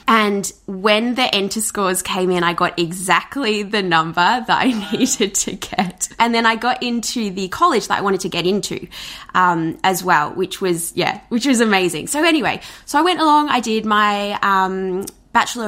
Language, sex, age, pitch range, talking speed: English, female, 20-39, 180-240 Hz, 190 wpm